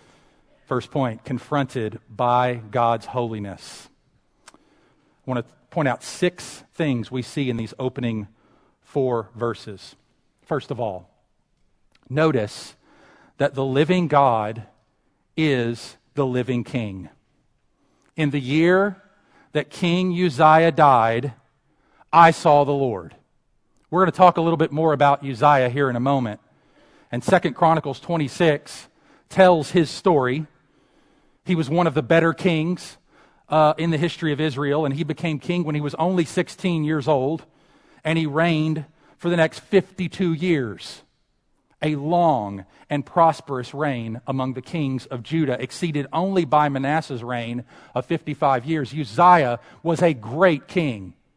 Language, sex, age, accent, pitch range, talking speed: English, male, 40-59, American, 125-170 Hz, 140 wpm